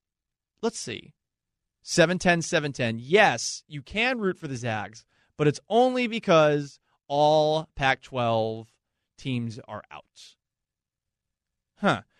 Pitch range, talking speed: 130-195 Hz, 120 wpm